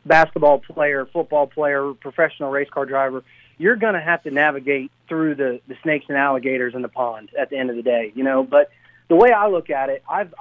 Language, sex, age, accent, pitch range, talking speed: English, male, 30-49, American, 135-165 Hz, 225 wpm